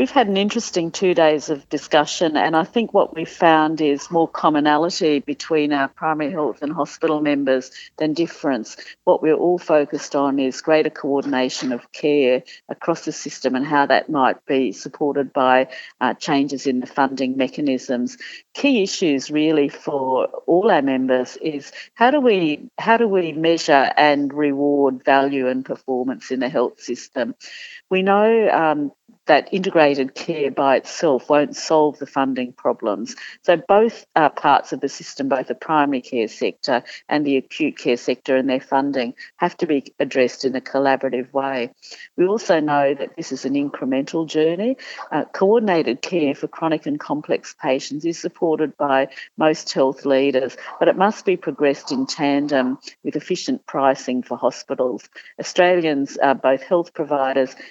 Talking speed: 160 wpm